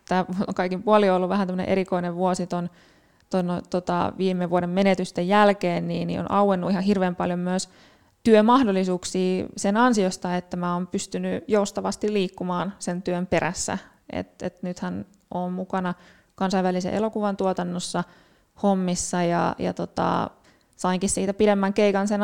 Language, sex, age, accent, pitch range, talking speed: Finnish, female, 20-39, native, 175-195 Hz, 140 wpm